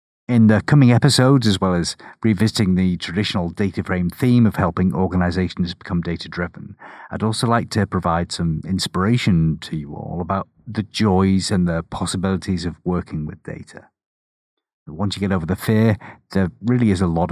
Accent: British